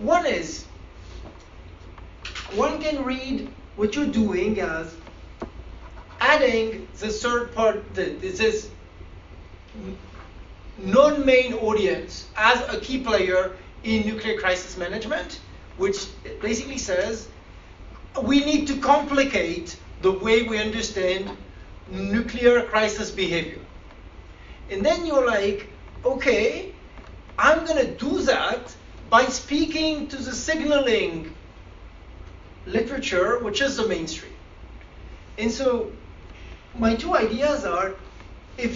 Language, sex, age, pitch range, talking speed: French, male, 40-59, 165-255 Hz, 100 wpm